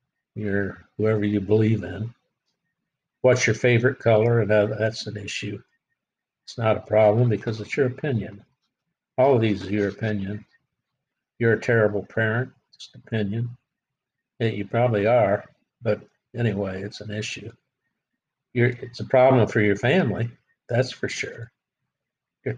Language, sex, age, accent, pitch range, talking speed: English, male, 60-79, American, 105-120 Hz, 140 wpm